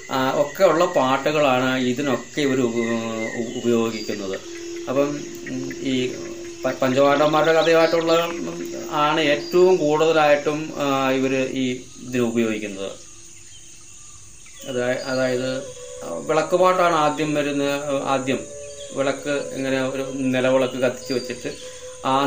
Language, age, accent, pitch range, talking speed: Malayalam, 20-39, native, 125-155 Hz, 80 wpm